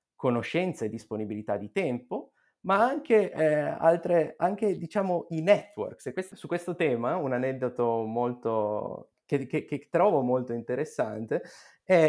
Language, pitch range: Italian, 115-160 Hz